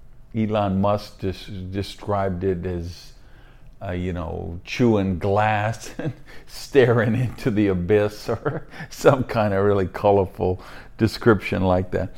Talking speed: 120 wpm